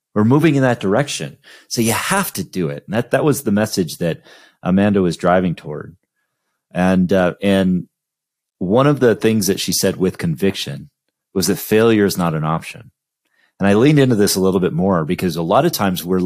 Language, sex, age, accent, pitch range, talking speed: English, male, 30-49, American, 90-120 Hz, 205 wpm